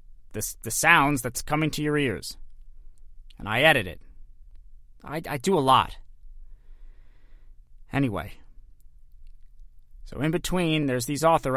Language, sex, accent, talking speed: English, male, American, 120 wpm